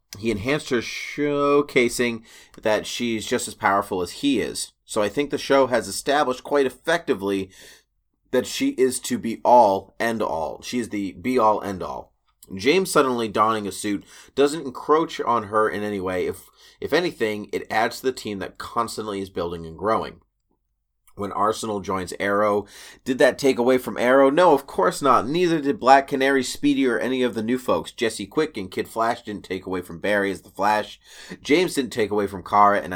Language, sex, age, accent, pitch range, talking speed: English, male, 30-49, American, 100-135 Hz, 195 wpm